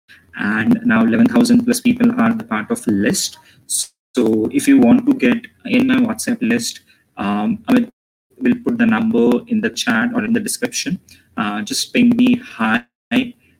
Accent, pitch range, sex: Indian, 225-250 Hz, male